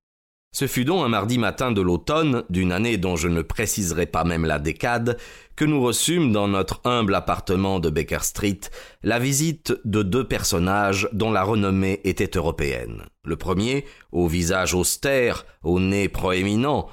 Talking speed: 165 wpm